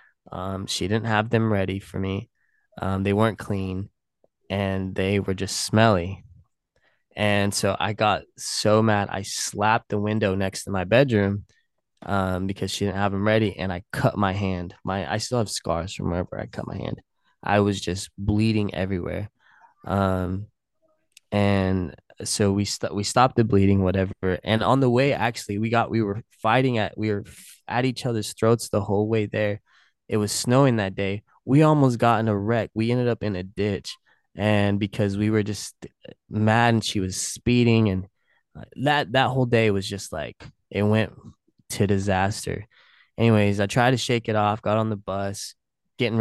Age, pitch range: 20-39, 95-110 Hz